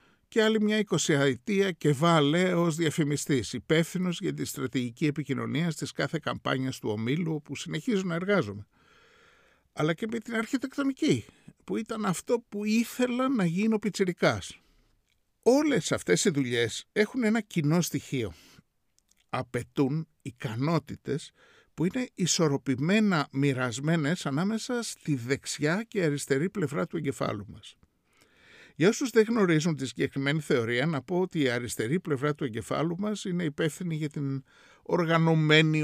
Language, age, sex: Greek, 60-79, male